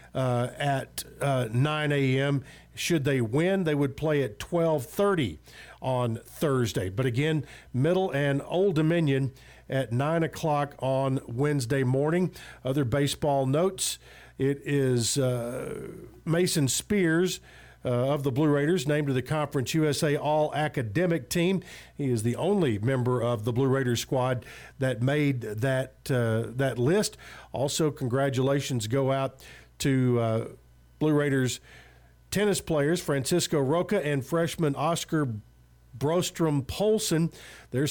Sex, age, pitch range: male, 50-69, 130-160 Hz